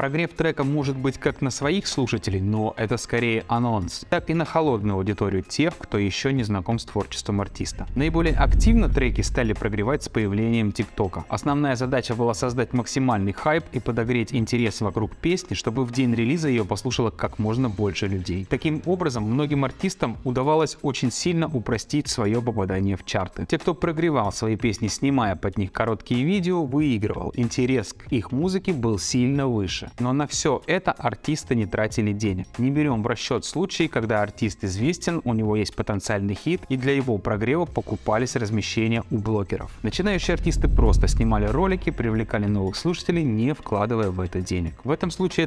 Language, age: Russian, 20-39